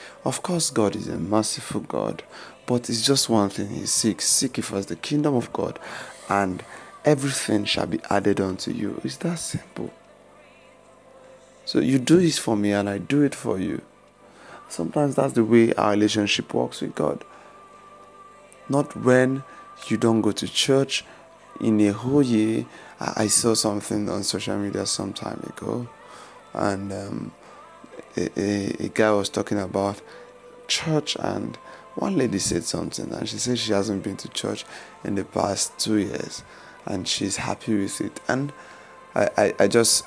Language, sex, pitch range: English, male, 100-120 Hz